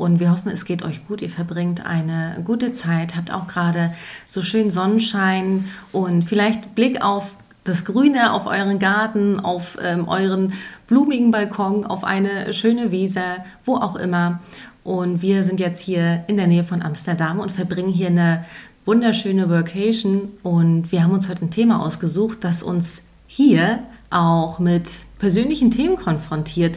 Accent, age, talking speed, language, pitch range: German, 30-49, 160 wpm, German, 175-210 Hz